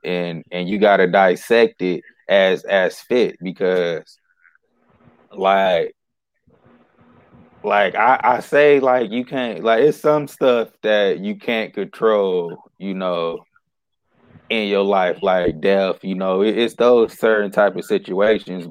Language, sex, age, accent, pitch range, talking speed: English, male, 20-39, American, 95-145 Hz, 130 wpm